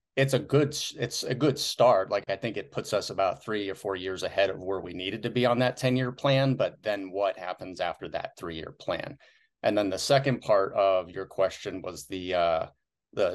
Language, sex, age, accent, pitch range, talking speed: English, male, 30-49, American, 95-125 Hz, 230 wpm